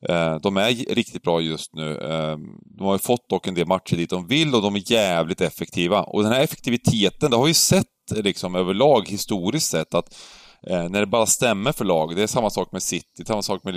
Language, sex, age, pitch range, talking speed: Swedish, male, 30-49, 90-125 Hz, 220 wpm